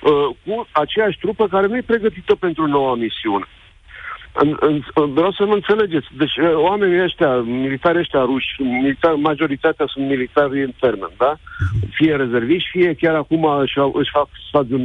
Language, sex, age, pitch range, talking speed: Romanian, male, 50-69, 145-215 Hz, 135 wpm